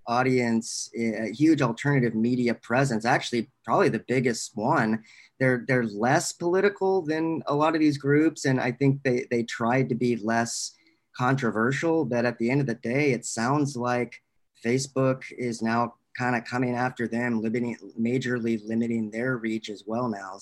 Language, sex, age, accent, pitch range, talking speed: English, male, 30-49, American, 115-135 Hz, 170 wpm